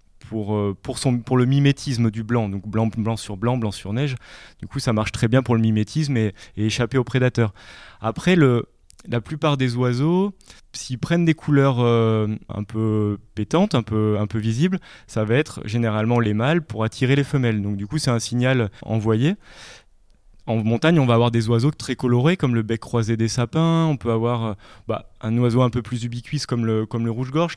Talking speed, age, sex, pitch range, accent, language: 210 wpm, 20-39, male, 115-140 Hz, French, French